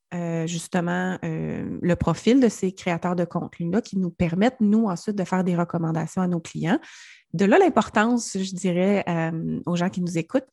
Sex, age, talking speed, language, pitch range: female, 30-49, 190 wpm, French, 175-210 Hz